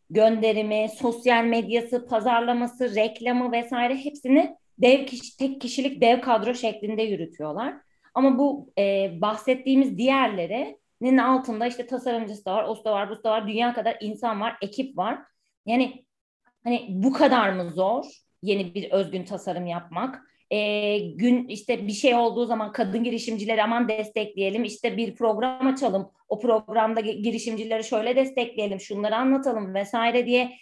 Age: 30-49